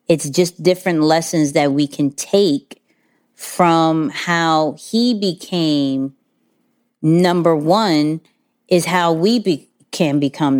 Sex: female